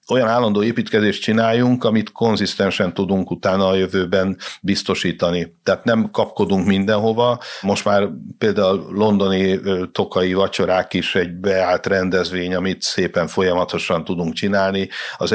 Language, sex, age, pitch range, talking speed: Hungarian, male, 60-79, 95-105 Hz, 120 wpm